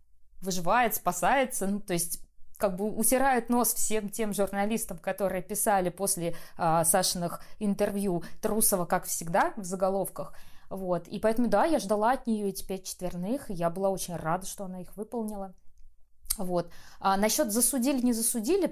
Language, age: Russian, 20-39